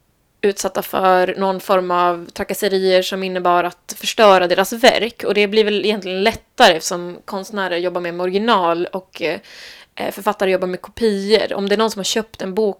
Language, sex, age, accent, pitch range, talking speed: Swedish, female, 20-39, native, 190-235 Hz, 175 wpm